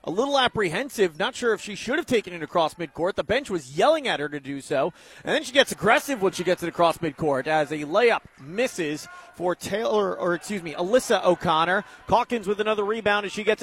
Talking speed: 225 wpm